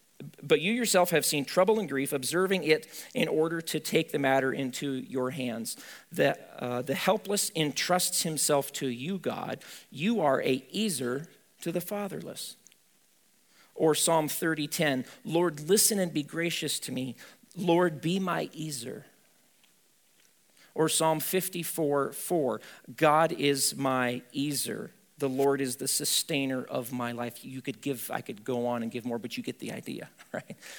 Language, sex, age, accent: English, male, 40-59, American